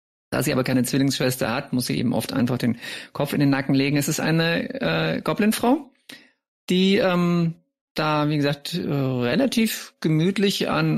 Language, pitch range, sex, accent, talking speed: German, 130-180 Hz, male, German, 170 wpm